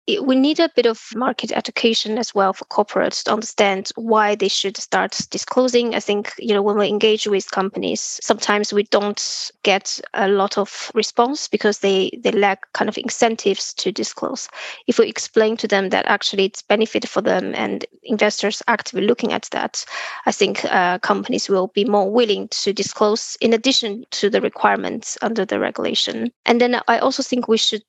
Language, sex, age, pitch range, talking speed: English, female, 20-39, 205-235 Hz, 185 wpm